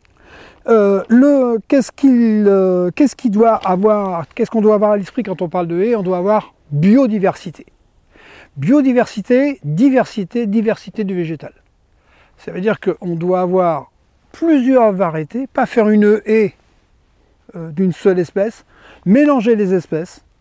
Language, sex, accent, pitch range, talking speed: French, male, French, 170-225 Hz, 125 wpm